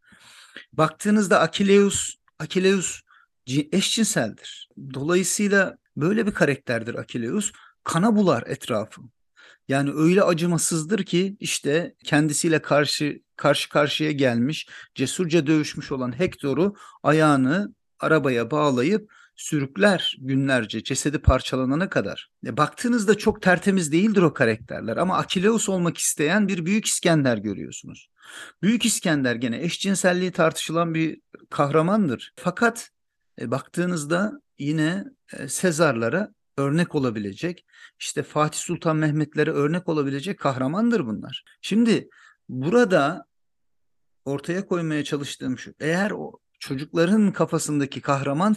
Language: Turkish